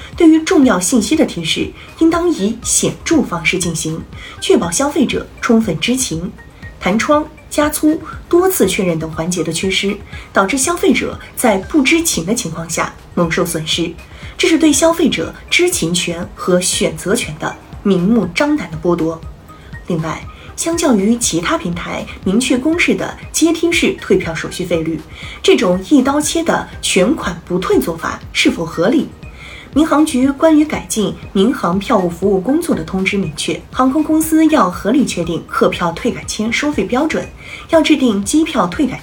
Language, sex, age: Chinese, female, 30-49